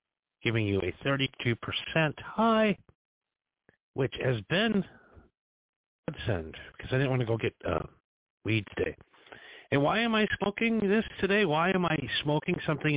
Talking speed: 145 wpm